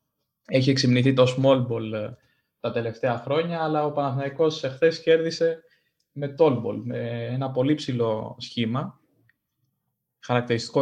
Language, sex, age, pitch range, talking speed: Greek, male, 20-39, 125-165 Hz, 120 wpm